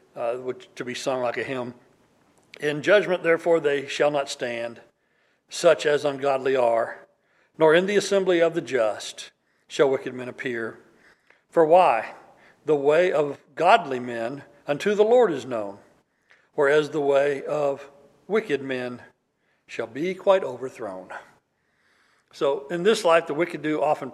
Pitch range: 135-185 Hz